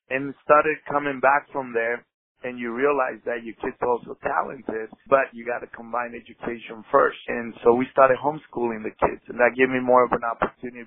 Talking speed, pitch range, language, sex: 205 wpm, 115-130 Hz, English, male